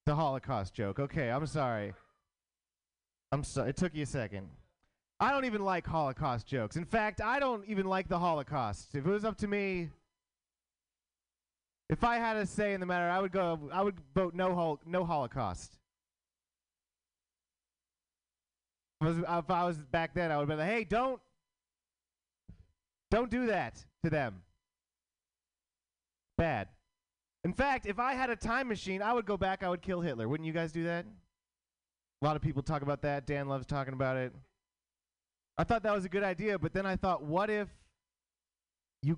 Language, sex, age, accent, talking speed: English, male, 30-49, American, 180 wpm